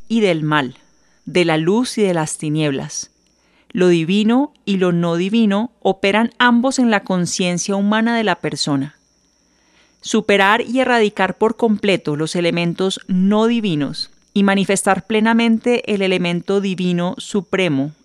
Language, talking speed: Spanish, 135 wpm